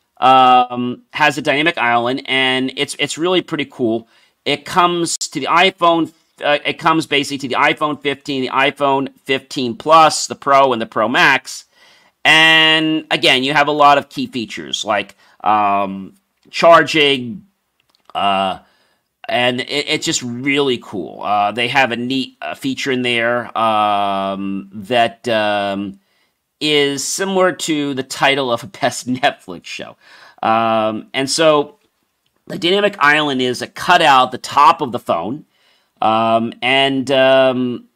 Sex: male